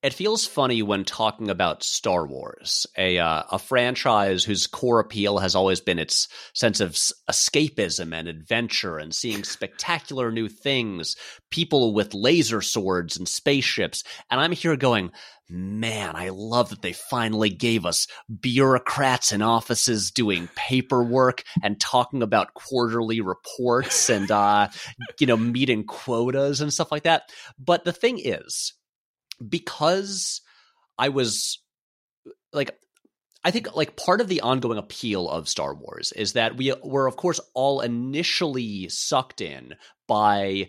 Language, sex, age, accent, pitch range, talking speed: English, male, 30-49, American, 100-130 Hz, 145 wpm